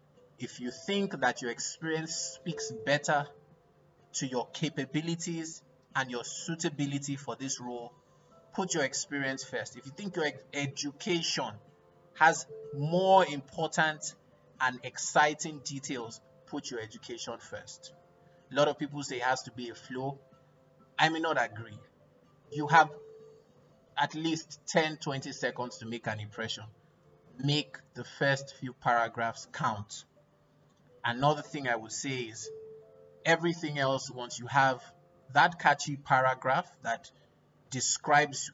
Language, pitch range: English, 125-155 Hz